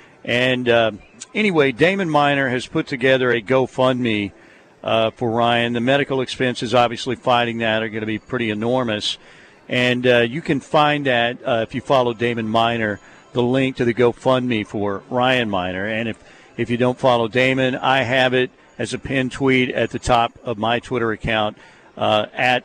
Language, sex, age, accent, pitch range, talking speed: English, male, 50-69, American, 115-135 Hz, 180 wpm